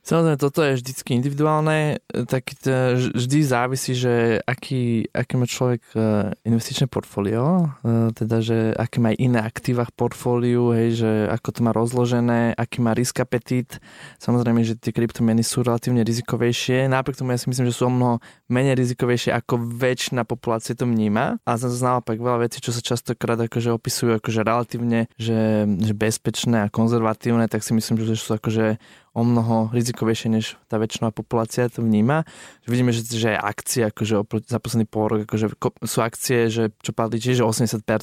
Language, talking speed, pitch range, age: Slovak, 160 wpm, 110-125 Hz, 20-39